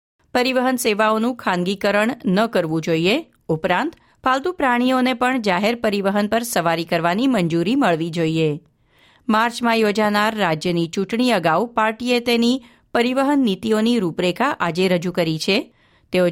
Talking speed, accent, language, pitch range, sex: 120 wpm, native, Gujarati, 175-240 Hz, female